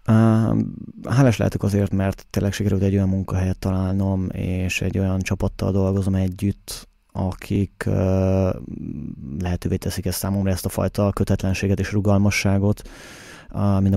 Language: Hungarian